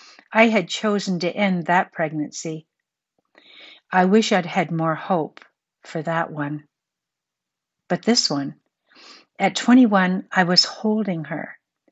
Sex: female